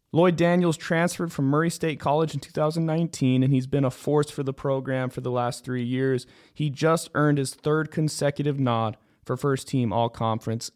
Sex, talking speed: male, 180 wpm